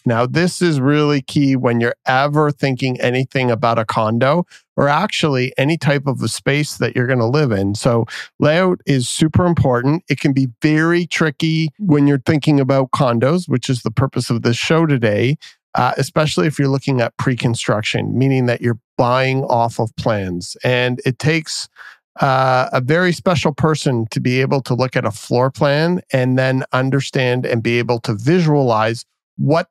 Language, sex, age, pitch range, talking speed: English, male, 40-59, 120-150 Hz, 180 wpm